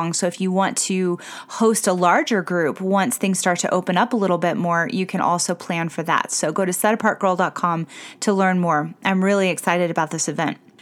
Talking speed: 210 wpm